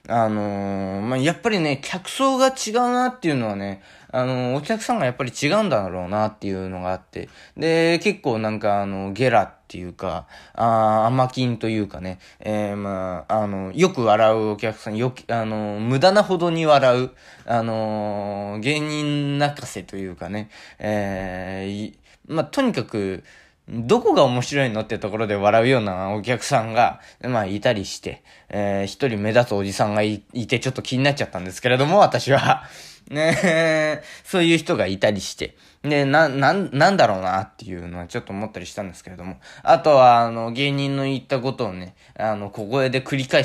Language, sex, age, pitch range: Japanese, male, 20-39, 100-140 Hz